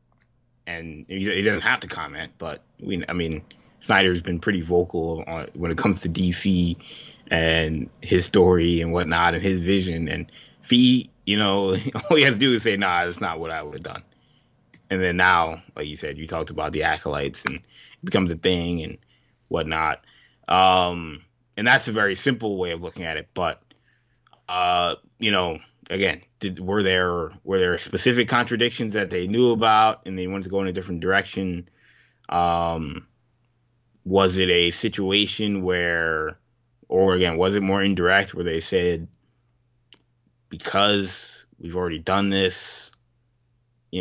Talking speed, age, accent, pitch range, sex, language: 165 wpm, 20-39, American, 85-120 Hz, male, English